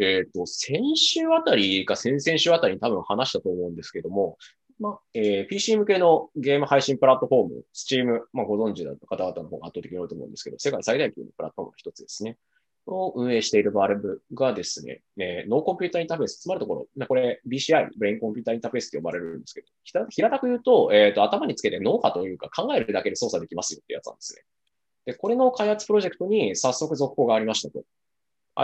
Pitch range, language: 120-205 Hz, Japanese